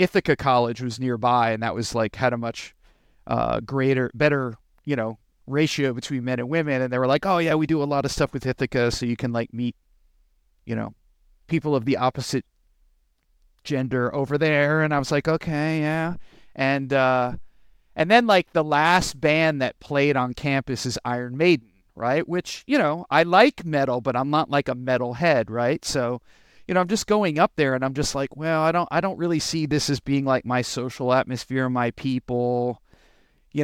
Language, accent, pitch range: English, American, 125-160 Hz